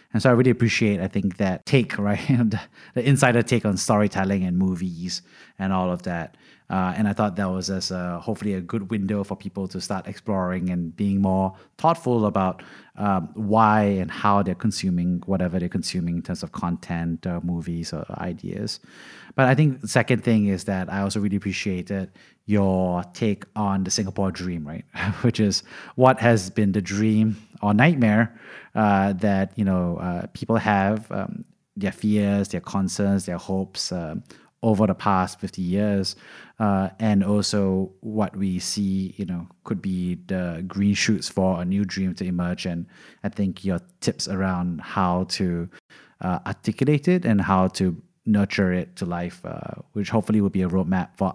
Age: 30-49